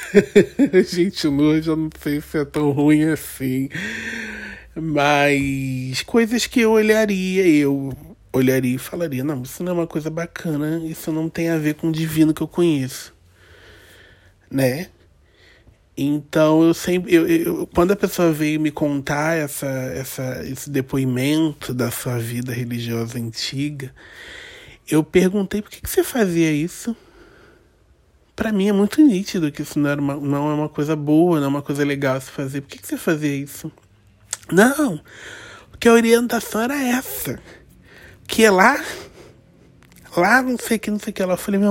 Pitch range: 135-205 Hz